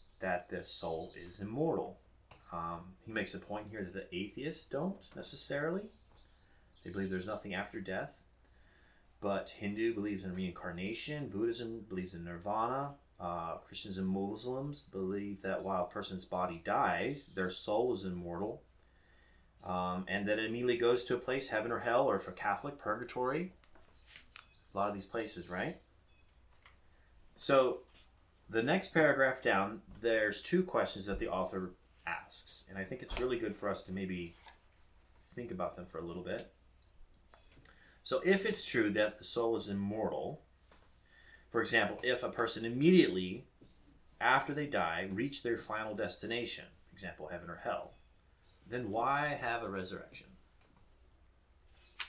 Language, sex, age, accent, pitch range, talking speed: English, male, 30-49, American, 90-115 Hz, 150 wpm